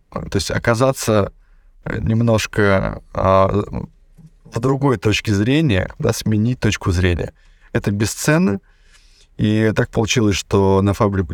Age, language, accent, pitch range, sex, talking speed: 20-39, Russian, native, 95-115 Hz, male, 100 wpm